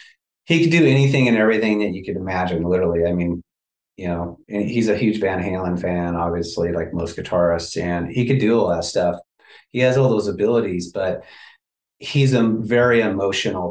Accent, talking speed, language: American, 190 wpm, English